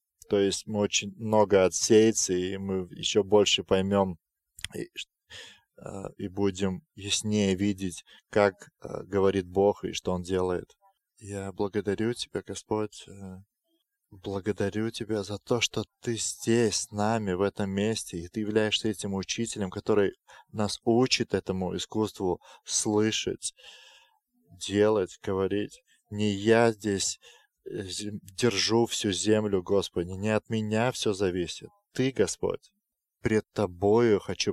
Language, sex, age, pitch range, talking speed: English, male, 20-39, 95-115 Hz, 120 wpm